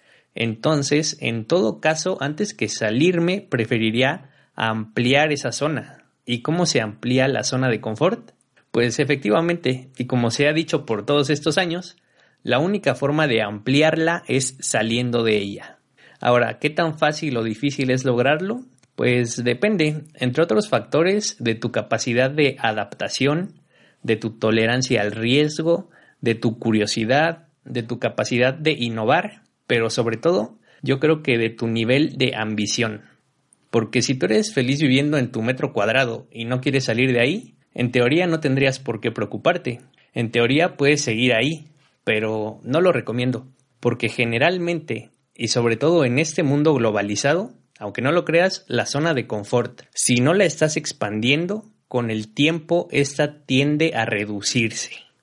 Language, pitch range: Spanish, 115-155 Hz